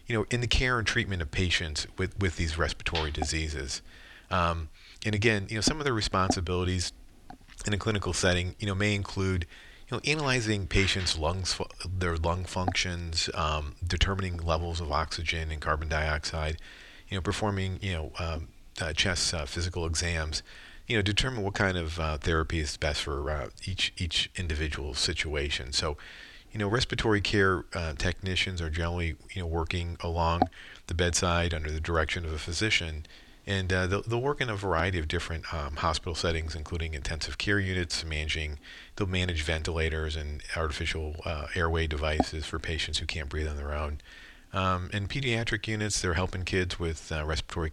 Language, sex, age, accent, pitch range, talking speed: English, male, 40-59, American, 80-95 Hz, 175 wpm